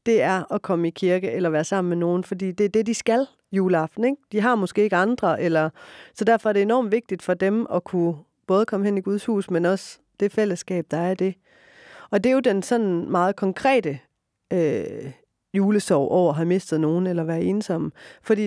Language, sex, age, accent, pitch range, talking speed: Danish, female, 30-49, native, 180-220 Hz, 220 wpm